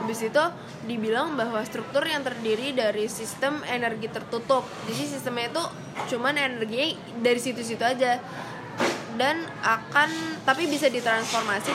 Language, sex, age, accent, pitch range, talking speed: Indonesian, female, 20-39, native, 210-255 Hz, 125 wpm